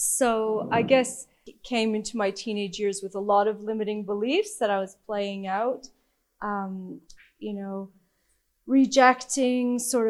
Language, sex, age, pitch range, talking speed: English, female, 30-49, 205-245 Hz, 150 wpm